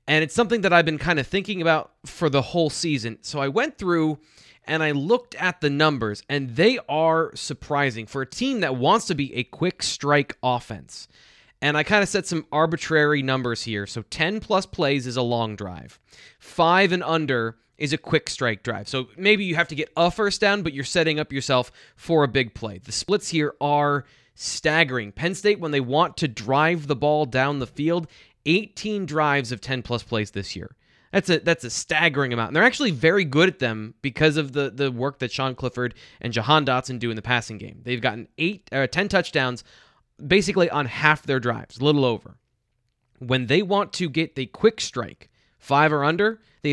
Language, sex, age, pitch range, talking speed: English, male, 20-39, 125-170 Hz, 210 wpm